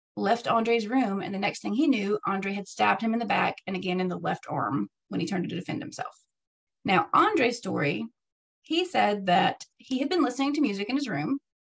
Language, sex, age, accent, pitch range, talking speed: English, female, 30-49, American, 185-245 Hz, 220 wpm